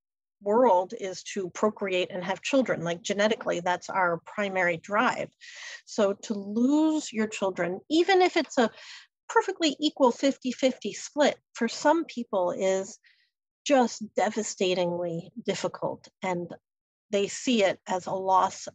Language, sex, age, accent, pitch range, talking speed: English, female, 40-59, American, 185-235 Hz, 130 wpm